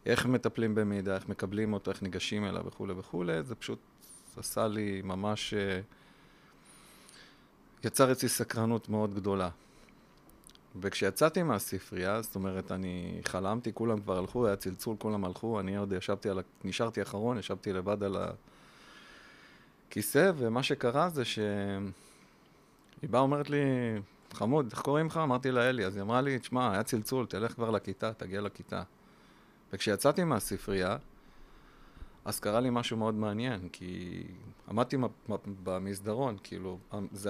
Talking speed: 135 wpm